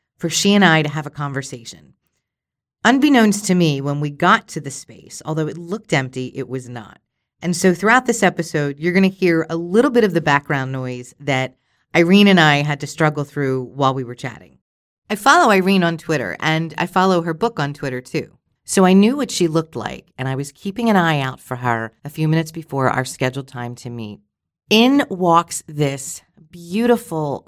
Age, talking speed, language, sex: 40-59, 205 wpm, English, female